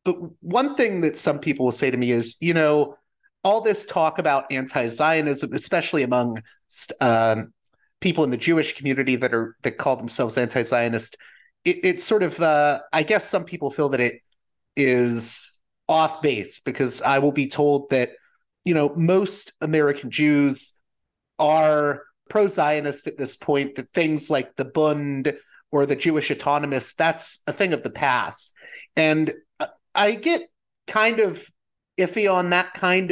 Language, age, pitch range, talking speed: English, 30-49, 135-175 Hz, 150 wpm